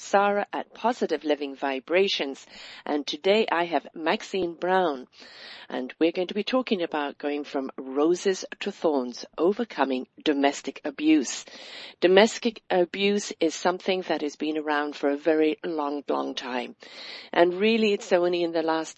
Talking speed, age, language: 150 wpm, 50-69, English